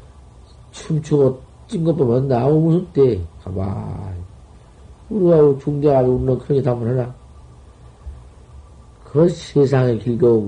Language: Korean